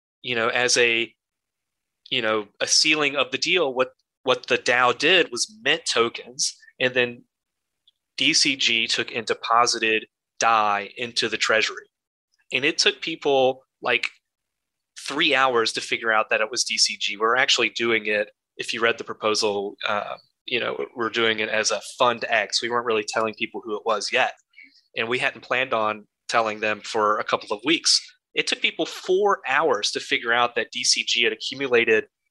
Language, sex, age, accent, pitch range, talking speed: English, male, 30-49, American, 115-180 Hz, 175 wpm